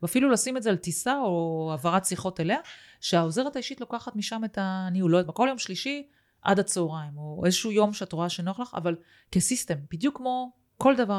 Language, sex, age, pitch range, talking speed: Hebrew, female, 30-49, 165-210 Hz, 200 wpm